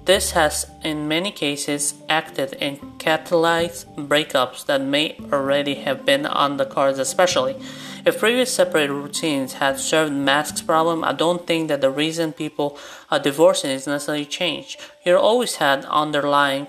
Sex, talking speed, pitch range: male, 150 wpm, 145-175 Hz